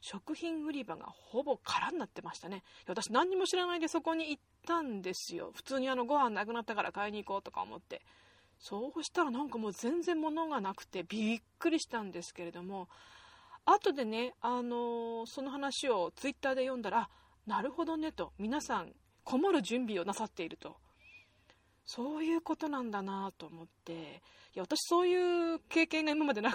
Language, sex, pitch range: Japanese, female, 200-300 Hz